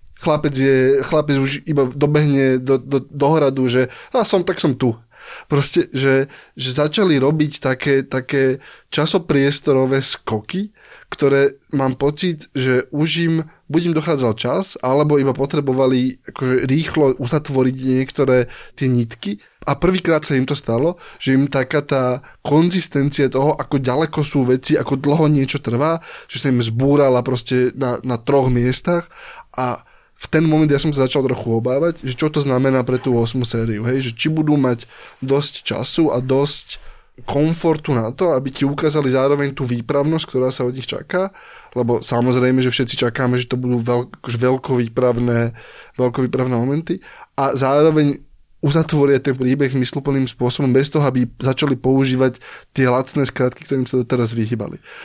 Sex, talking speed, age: male, 155 wpm, 20-39